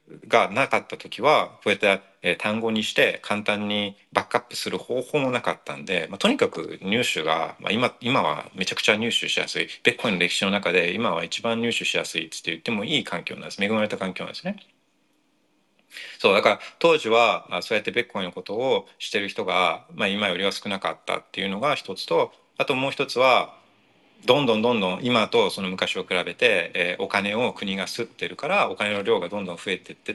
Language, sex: Japanese, male